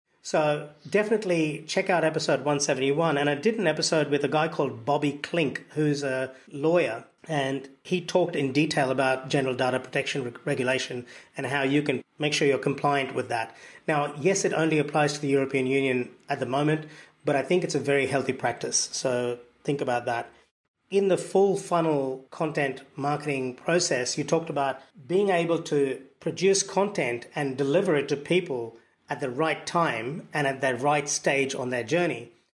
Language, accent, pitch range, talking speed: English, Australian, 135-170 Hz, 175 wpm